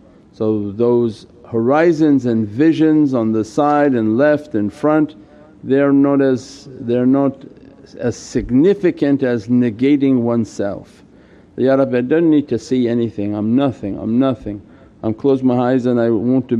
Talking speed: 150 wpm